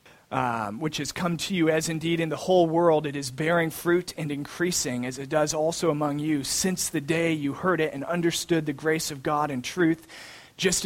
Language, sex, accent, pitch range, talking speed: English, male, American, 140-165 Hz, 215 wpm